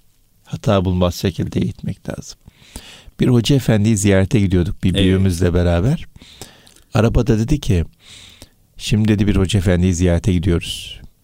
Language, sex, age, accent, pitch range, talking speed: Turkish, male, 60-79, native, 95-115 Hz, 125 wpm